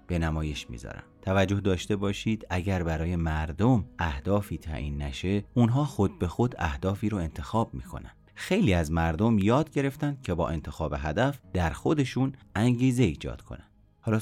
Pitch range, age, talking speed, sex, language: 85-110 Hz, 30-49, 150 wpm, male, Persian